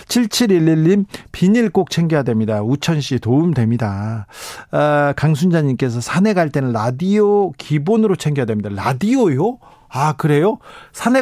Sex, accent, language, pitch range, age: male, native, Korean, 135-215 Hz, 40-59